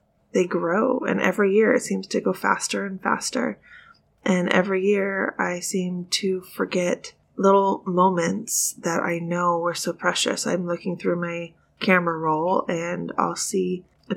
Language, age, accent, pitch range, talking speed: English, 20-39, American, 175-205 Hz, 155 wpm